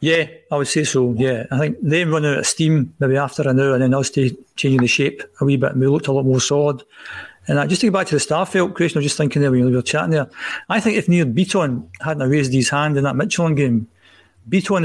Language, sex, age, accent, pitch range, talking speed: English, male, 50-69, British, 140-165 Hz, 275 wpm